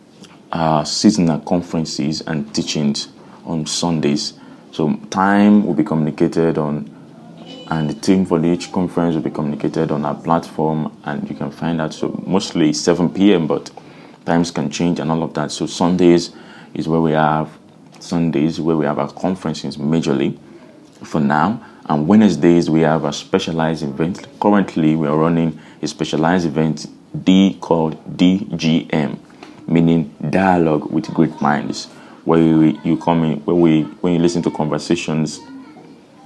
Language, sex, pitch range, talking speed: English, male, 75-85 Hz, 150 wpm